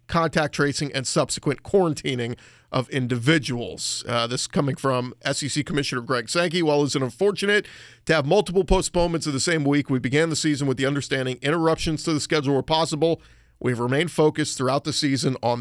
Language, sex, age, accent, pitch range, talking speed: English, male, 40-59, American, 120-150 Hz, 175 wpm